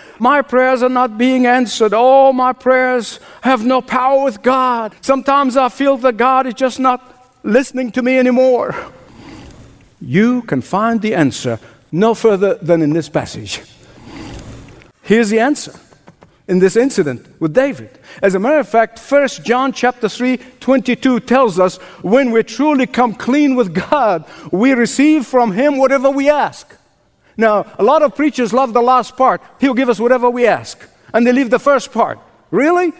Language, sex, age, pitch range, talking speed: English, male, 60-79, 230-270 Hz, 170 wpm